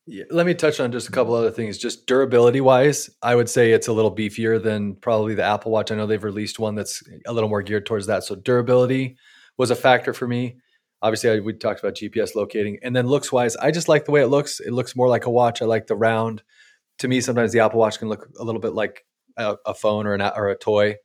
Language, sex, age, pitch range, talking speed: English, male, 20-39, 105-125 Hz, 255 wpm